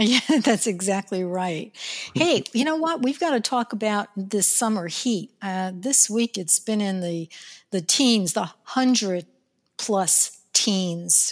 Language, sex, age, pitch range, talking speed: English, female, 60-79, 185-230 Hz, 150 wpm